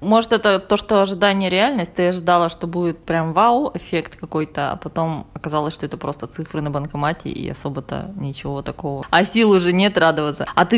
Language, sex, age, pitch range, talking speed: Russian, female, 20-39, 170-210 Hz, 190 wpm